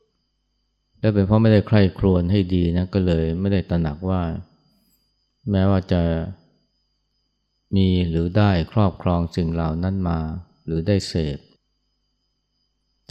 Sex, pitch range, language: male, 85-100 Hz, Thai